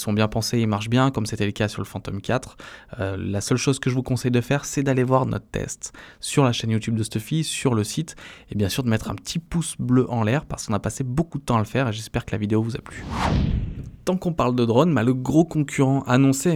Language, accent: French, French